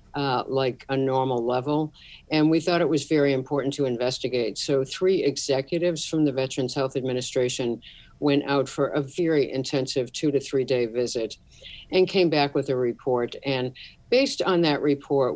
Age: 60-79